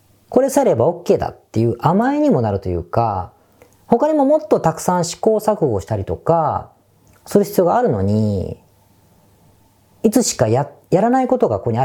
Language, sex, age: Japanese, female, 40-59